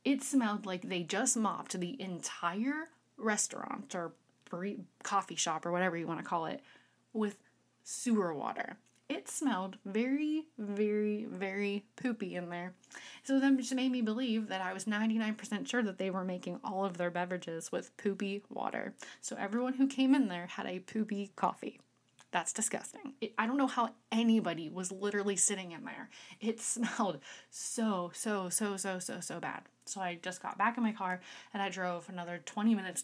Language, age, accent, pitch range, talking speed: English, 20-39, American, 185-235 Hz, 175 wpm